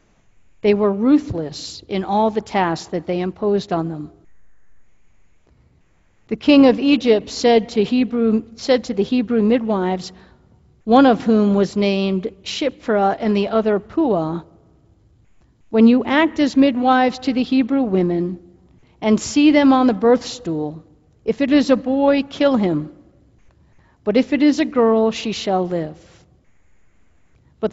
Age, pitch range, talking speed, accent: 50-69, 200-260 Hz, 145 wpm, American